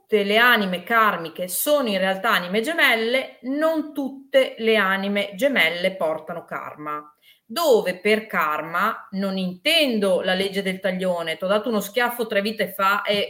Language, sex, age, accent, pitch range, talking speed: Italian, female, 30-49, native, 180-230 Hz, 150 wpm